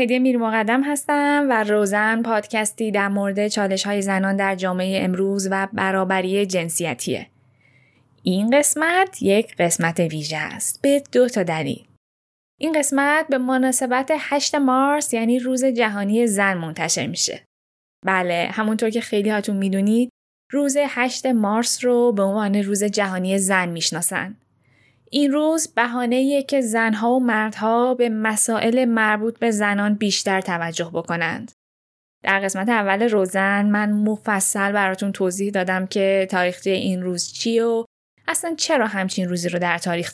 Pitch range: 190-245 Hz